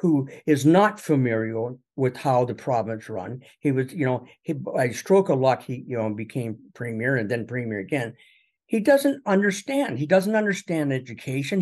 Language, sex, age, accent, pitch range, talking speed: English, male, 50-69, American, 130-195 Hz, 180 wpm